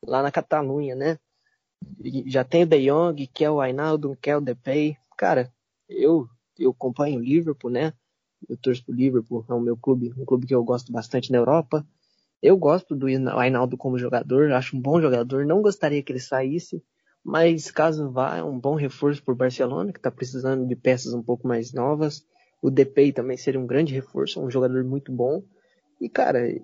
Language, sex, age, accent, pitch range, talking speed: Portuguese, male, 20-39, Brazilian, 130-165 Hz, 195 wpm